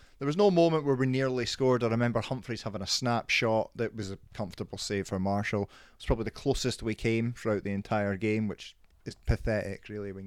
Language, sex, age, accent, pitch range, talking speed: English, male, 30-49, British, 95-120 Hz, 220 wpm